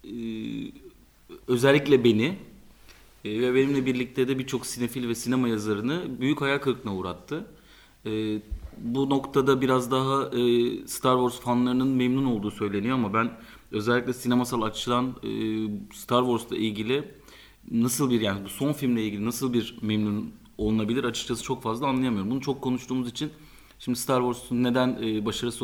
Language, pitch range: Turkish, 110-130 Hz